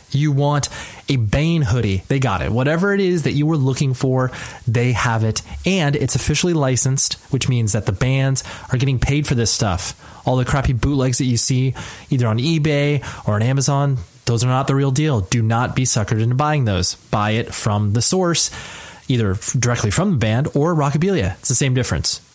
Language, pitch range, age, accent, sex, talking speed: English, 115-145 Hz, 30-49, American, male, 205 wpm